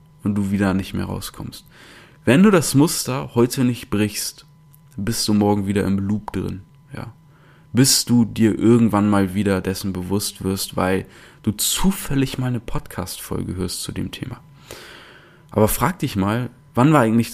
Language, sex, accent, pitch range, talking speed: German, male, German, 100-125 Hz, 160 wpm